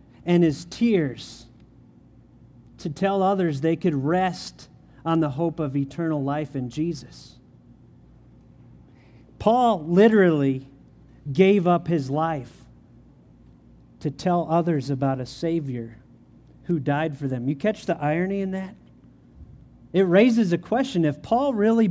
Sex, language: male, English